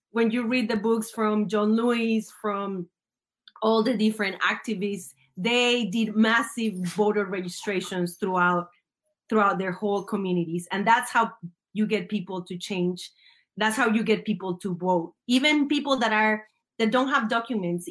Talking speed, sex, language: 155 wpm, female, English